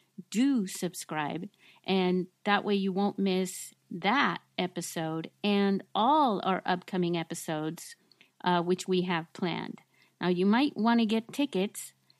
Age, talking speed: 50-69, 135 wpm